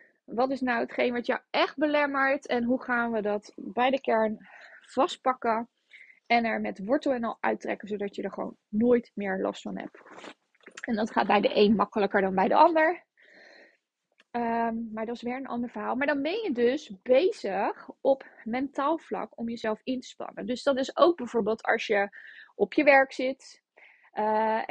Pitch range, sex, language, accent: 225-275 Hz, female, Dutch, Dutch